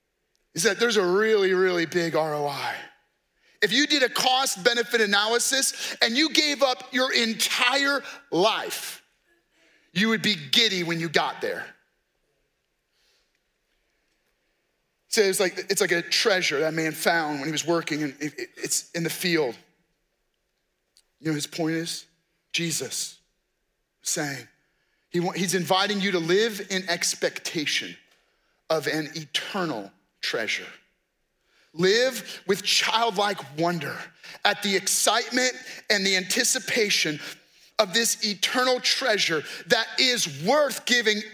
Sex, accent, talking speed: male, American, 125 wpm